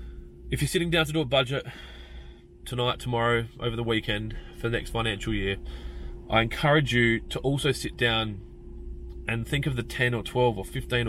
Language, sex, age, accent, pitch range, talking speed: English, male, 20-39, Australian, 100-125 Hz, 185 wpm